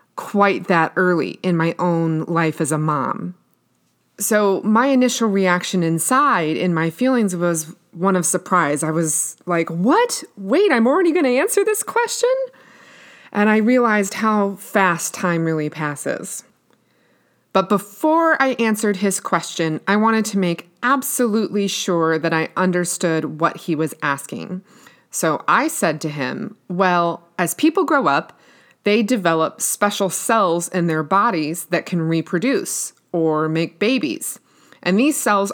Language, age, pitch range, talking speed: English, 30-49, 170-230 Hz, 145 wpm